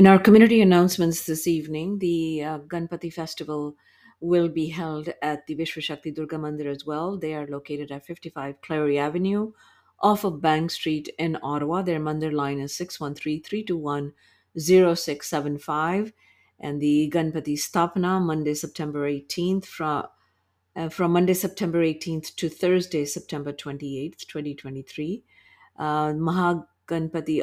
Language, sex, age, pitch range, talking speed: English, female, 50-69, 150-175 Hz, 130 wpm